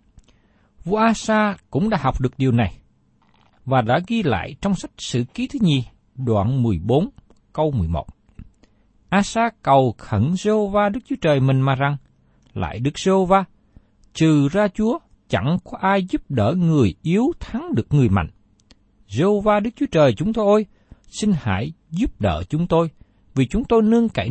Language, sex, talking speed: Vietnamese, male, 170 wpm